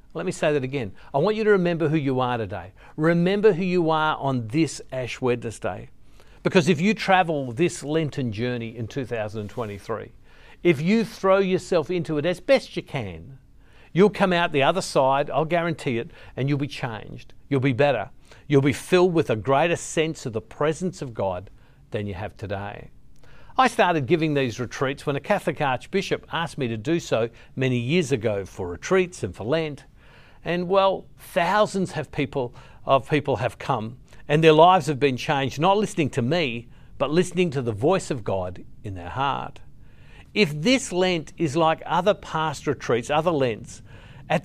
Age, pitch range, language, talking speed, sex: 50-69, 125-175 Hz, English, 180 wpm, male